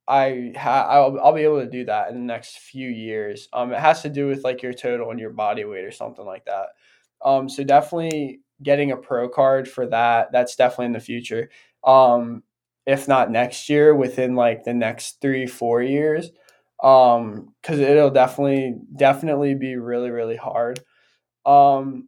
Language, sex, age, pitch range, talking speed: English, male, 20-39, 125-145 Hz, 180 wpm